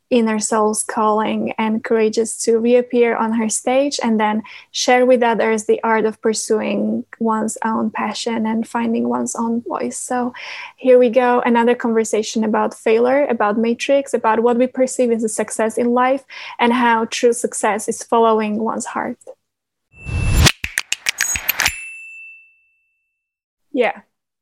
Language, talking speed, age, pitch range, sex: English, 135 wpm, 20-39, 220-245 Hz, female